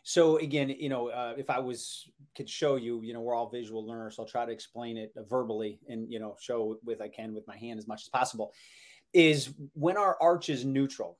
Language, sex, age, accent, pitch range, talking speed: English, male, 30-49, American, 125-155 Hz, 240 wpm